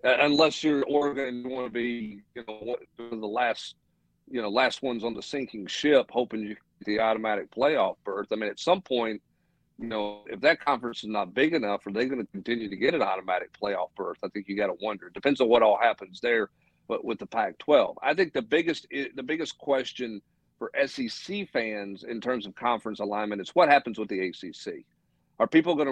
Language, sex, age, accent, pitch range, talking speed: English, male, 50-69, American, 110-135 Hz, 220 wpm